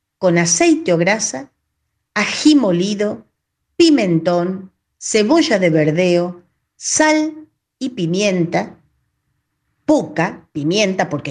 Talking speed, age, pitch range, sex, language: 85 wpm, 40-59, 160-220 Hz, female, Spanish